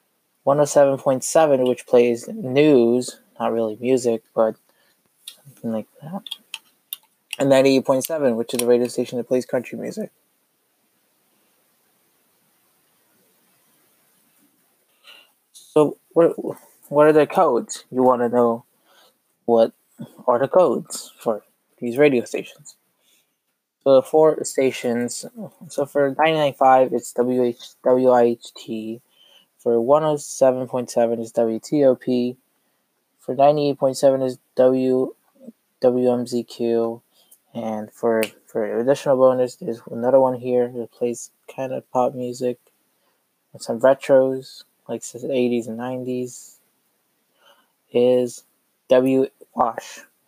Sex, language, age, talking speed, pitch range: male, English, 20-39, 105 wpm, 120-140 Hz